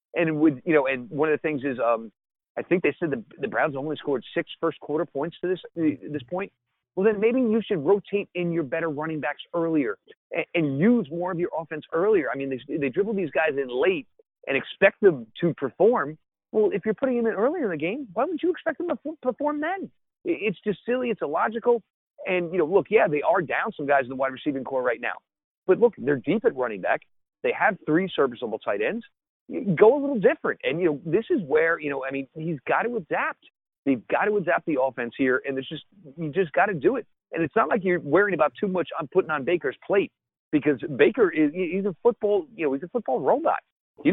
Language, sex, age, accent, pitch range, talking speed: English, male, 40-59, American, 145-220 Hz, 240 wpm